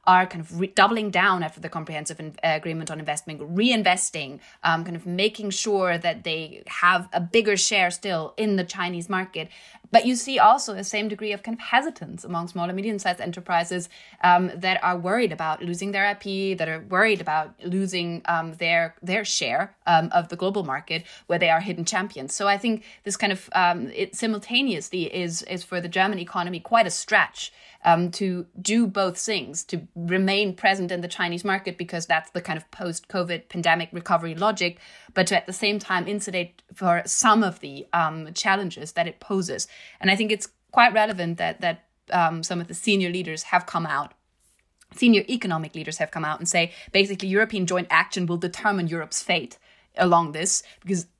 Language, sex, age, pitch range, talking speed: English, female, 20-39, 165-200 Hz, 190 wpm